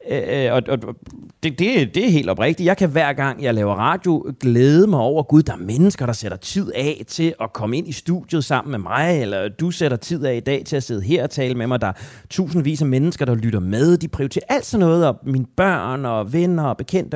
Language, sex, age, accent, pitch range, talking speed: Danish, male, 30-49, native, 130-170 Hz, 250 wpm